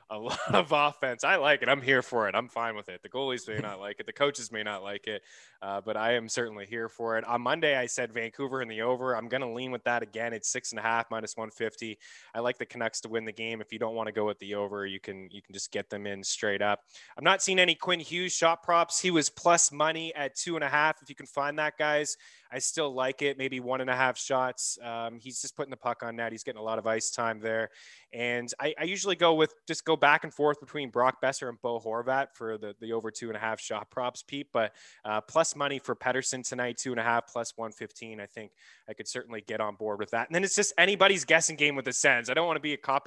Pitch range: 115-150 Hz